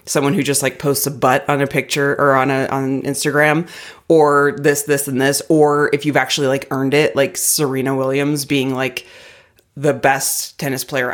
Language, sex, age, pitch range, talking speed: English, female, 30-49, 135-175 Hz, 195 wpm